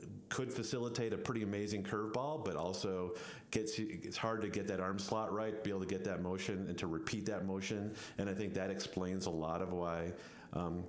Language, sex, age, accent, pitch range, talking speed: English, male, 40-59, American, 95-115 Hz, 210 wpm